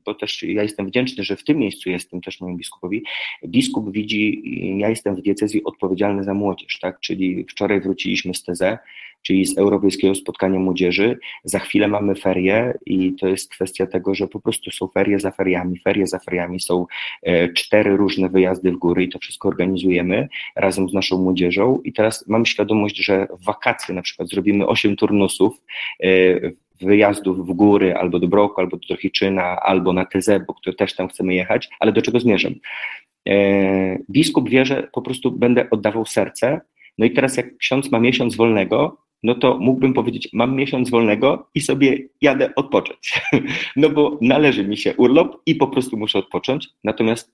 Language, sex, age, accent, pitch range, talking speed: Polish, male, 30-49, native, 95-110 Hz, 175 wpm